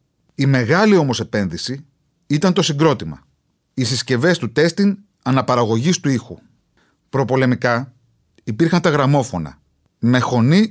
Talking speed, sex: 110 wpm, male